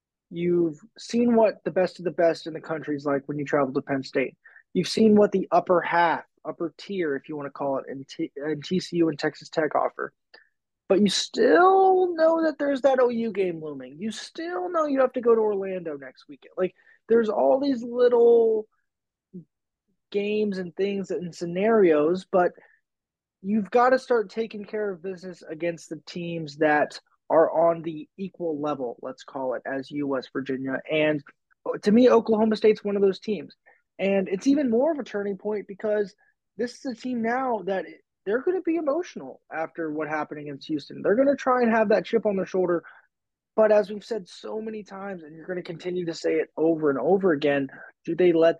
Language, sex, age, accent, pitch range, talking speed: English, male, 20-39, American, 155-225 Hz, 200 wpm